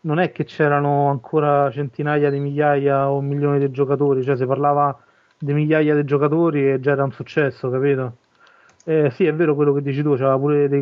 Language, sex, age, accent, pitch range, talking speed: Italian, male, 30-49, native, 140-155 Hz, 200 wpm